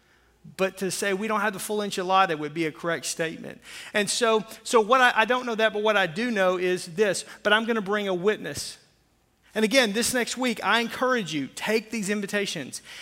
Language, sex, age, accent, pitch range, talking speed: English, male, 40-59, American, 180-215 Hz, 225 wpm